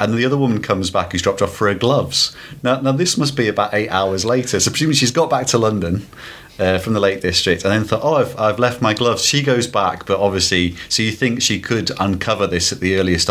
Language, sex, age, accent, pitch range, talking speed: English, male, 30-49, British, 95-125 Hz, 255 wpm